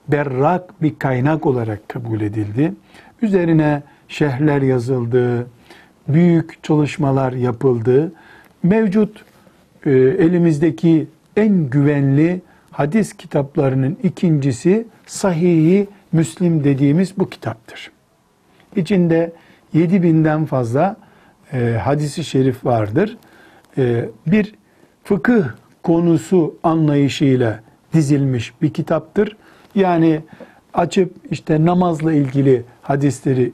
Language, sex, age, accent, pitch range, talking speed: Turkish, male, 60-79, native, 140-175 Hz, 80 wpm